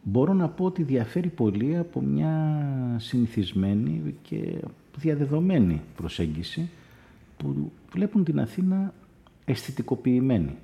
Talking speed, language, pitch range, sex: 95 wpm, Greek, 90-130 Hz, male